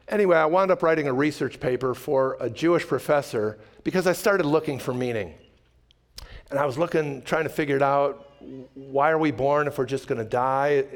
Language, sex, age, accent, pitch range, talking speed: English, male, 50-69, American, 135-165 Hz, 205 wpm